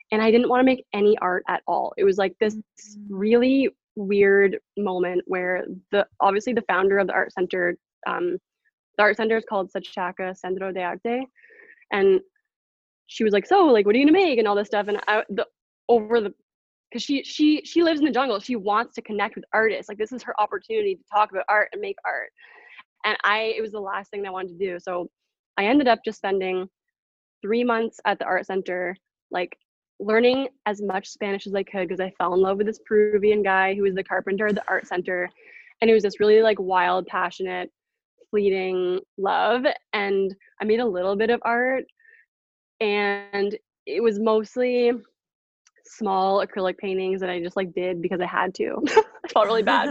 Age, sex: 20-39, female